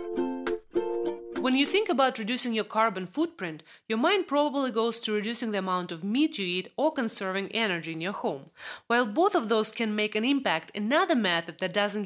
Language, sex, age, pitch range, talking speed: English, female, 30-49, 185-245 Hz, 190 wpm